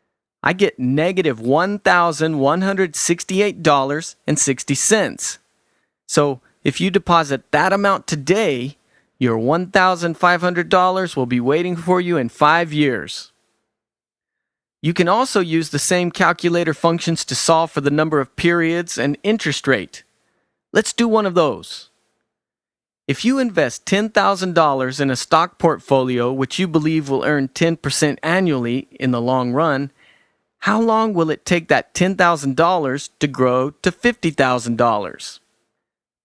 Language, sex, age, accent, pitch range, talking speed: English, male, 40-59, American, 140-180 Hz, 125 wpm